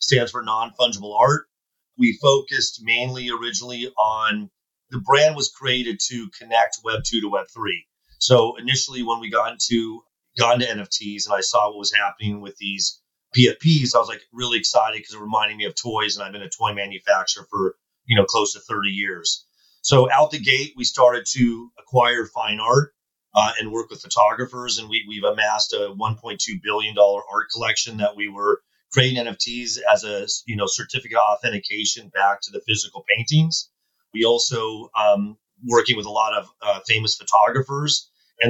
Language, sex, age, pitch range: English, male, 30-49, 105-130 Hz